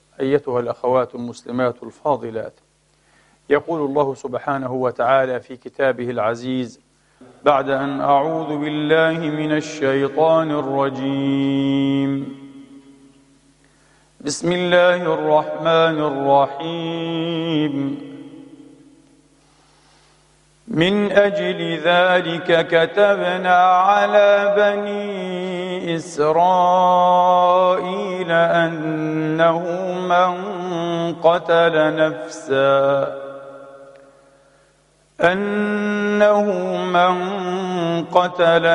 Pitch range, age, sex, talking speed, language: 140-180 Hz, 50-69, male, 55 wpm, Arabic